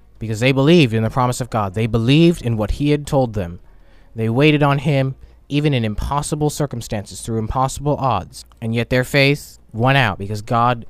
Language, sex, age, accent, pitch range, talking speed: English, male, 20-39, American, 110-140 Hz, 195 wpm